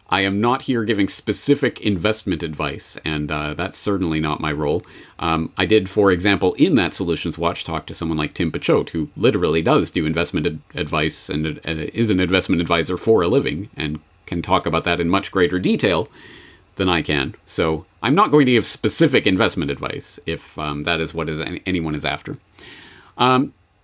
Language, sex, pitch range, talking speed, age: English, male, 85-110 Hz, 195 wpm, 40-59